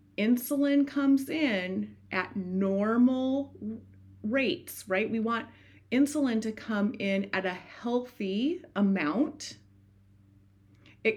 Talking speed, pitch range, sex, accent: 95 wpm, 185-255 Hz, female, American